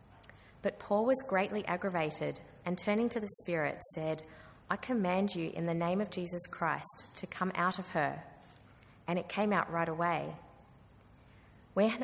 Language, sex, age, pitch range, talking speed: English, female, 20-39, 155-185 Hz, 160 wpm